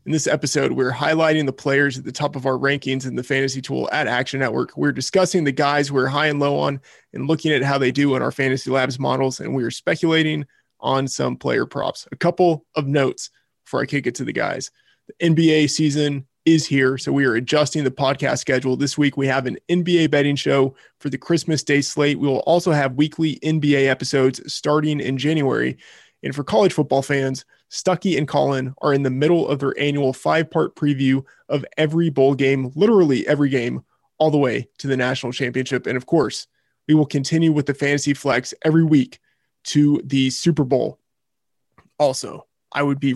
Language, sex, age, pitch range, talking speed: English, male, 20-39, 135-155 Hz, 200 wpm